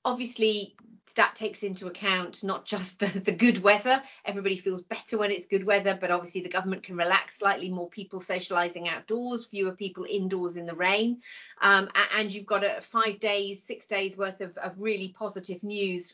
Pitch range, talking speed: 185-215 Hz, 185 wpm